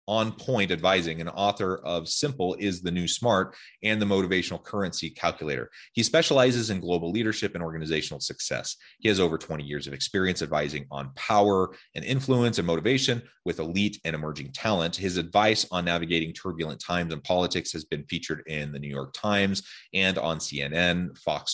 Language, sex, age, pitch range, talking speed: English, male, 30-49, 80-105 Hz, 175 wpm